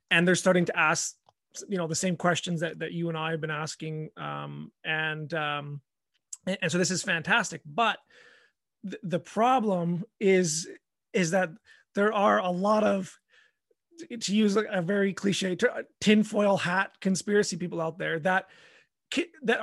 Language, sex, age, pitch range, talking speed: English, male, 30-49, 160-205 Hz, 155 wpm